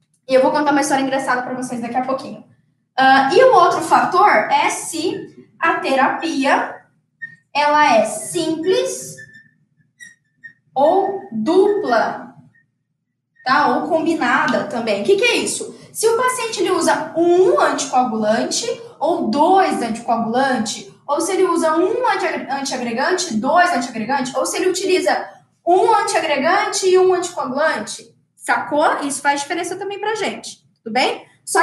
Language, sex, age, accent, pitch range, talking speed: Portuguese, female, 10-29, Brazilian, 250-365 Hz, 140 wpm